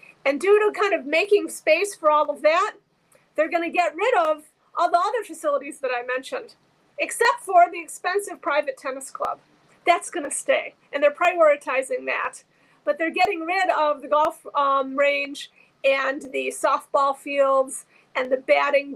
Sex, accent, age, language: female, American, 40-59, English